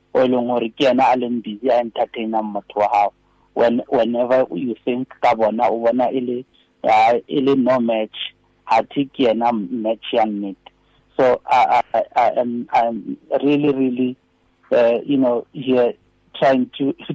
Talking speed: 80 wpm